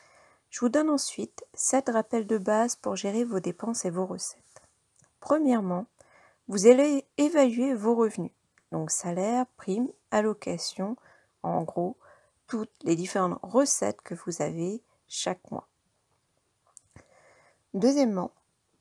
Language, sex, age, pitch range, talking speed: French, female, 40-59, 185-245 Hz, 120 wpm